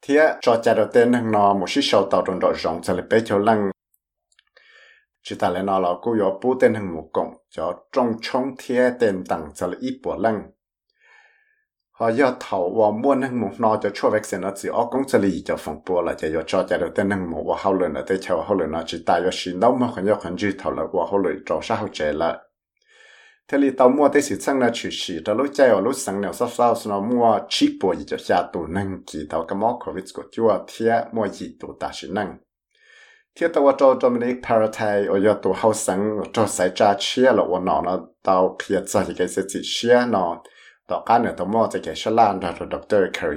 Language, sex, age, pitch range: English, male, 60-79, 95-135 Hz